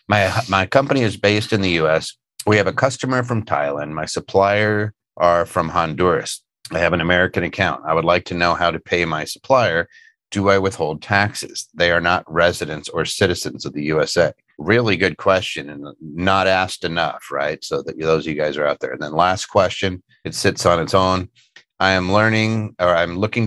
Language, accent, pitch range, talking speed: English, American, 85-110 Hz, 205 wpm